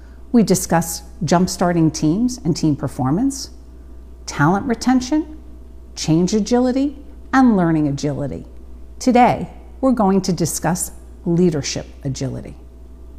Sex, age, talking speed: female, 50-69, 95 wpm